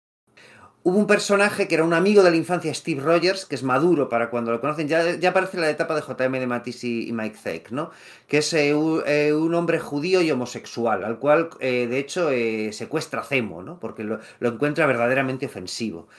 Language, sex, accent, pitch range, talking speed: Spanish, male, Spanish, 115-160 Hz, 215 wpm